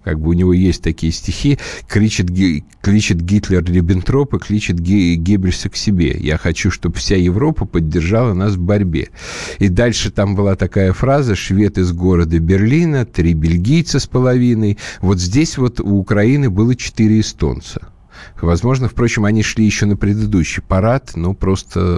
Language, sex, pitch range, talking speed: Russian, male, 85-110 Hz, 155 wpm